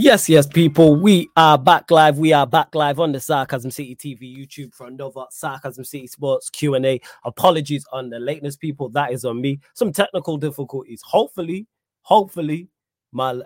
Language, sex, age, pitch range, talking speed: English, male, 20-39, 125-150 Hz, 170 wpm